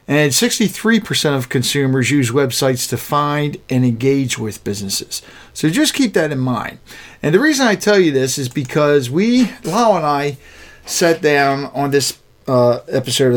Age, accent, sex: 50-69, American, male